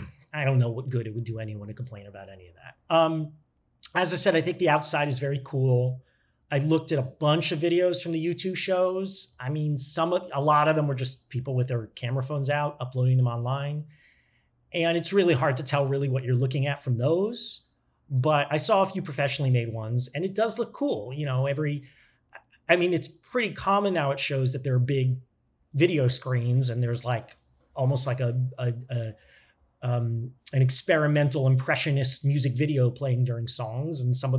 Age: 40-59